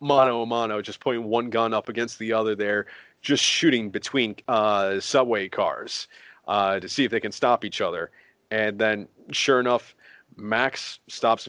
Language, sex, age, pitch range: English, male, 30-49, 105-125 Hz